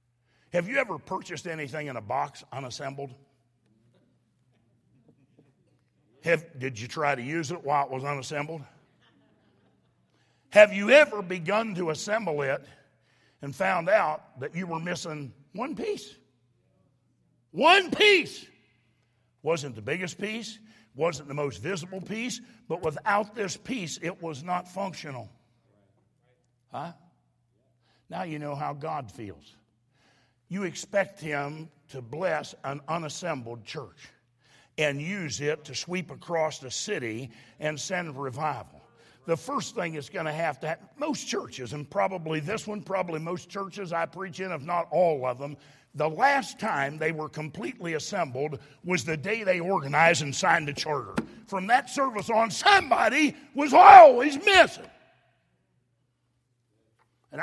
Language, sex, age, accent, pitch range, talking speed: English, male, 60-79, American, 135-190 Hz, 140 wpm